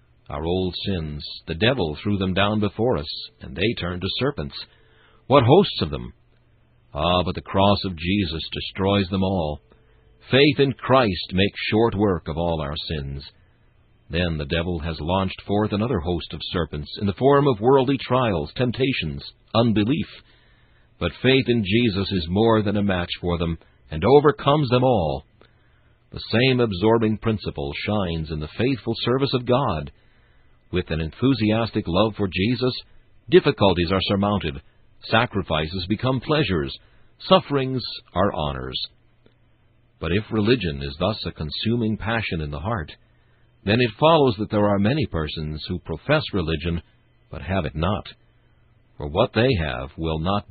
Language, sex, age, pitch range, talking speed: English, male, 60-79, 85-115 Hz, 155 wpm